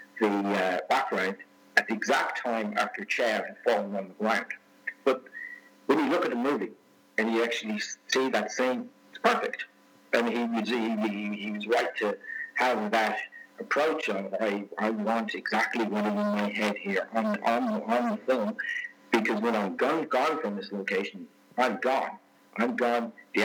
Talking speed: 175 wpm